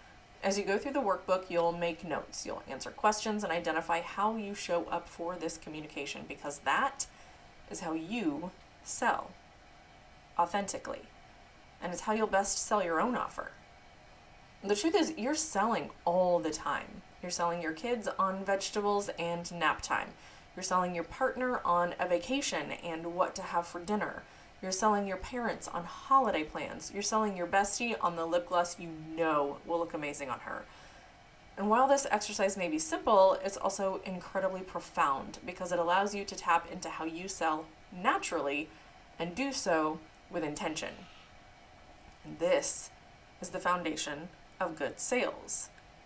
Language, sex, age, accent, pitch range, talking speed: English, female, 20-39, American, 170-215 Hz, 160 wpm